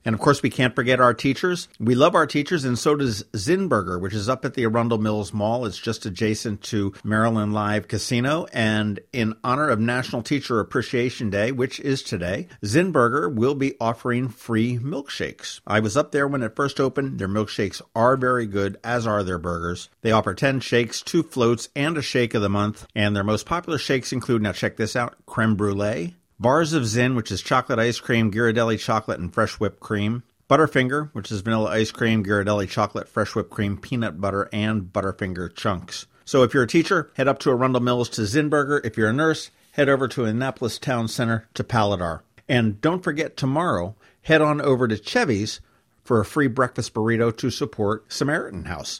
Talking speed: 195 wpm